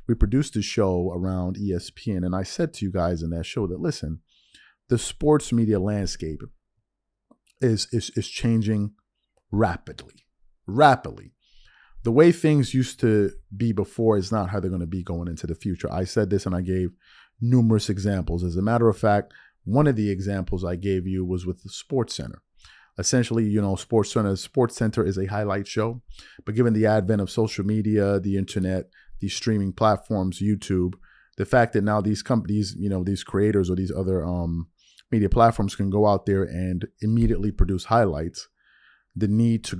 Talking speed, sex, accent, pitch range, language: 180 wpm, male, American, 95-110 Hz, English